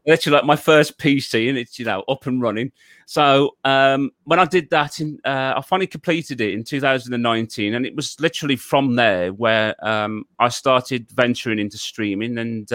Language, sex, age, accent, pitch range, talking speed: English, male, 30-49, British, 115-140 Hz, 190 wpm